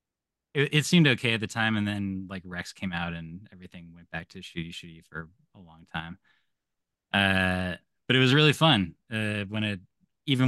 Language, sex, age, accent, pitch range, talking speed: English, male, 20-39, American, 90-110 Hz, 190 wpm